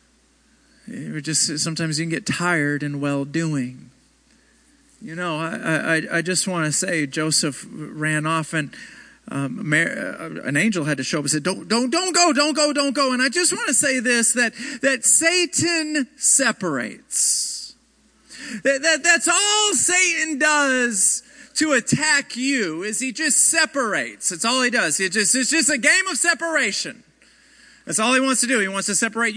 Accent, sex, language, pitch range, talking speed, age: American, male, English, 205-275 Hz, 180 wpm, 40-59